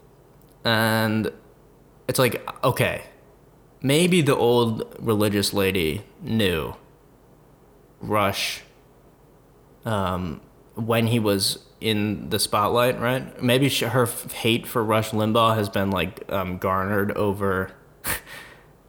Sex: male